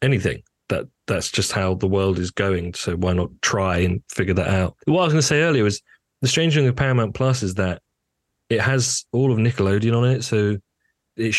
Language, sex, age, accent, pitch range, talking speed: English, male, 30-49, British, 95-115 Hz, 220 wpm